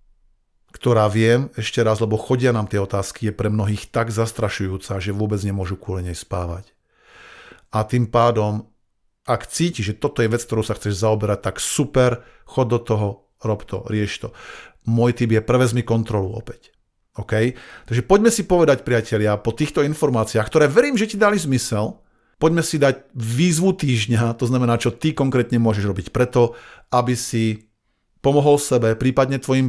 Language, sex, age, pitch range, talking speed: Slovak, male, 50-69, 105-130 Hz, 165 wpm